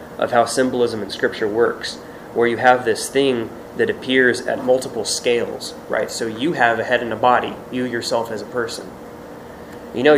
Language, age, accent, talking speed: English, 20-39, American, 190 wpm